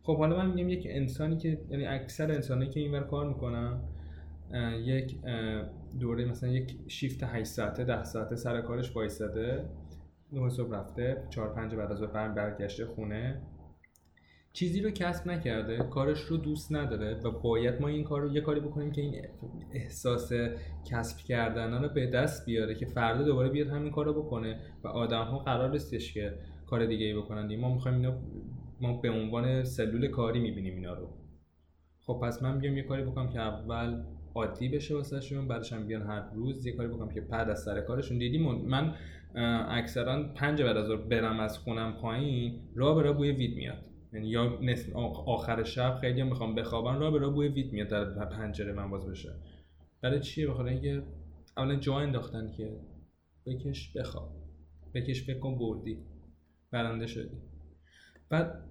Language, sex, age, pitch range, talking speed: Persian, male, 20-39, 105-135 Hz, 165 wpm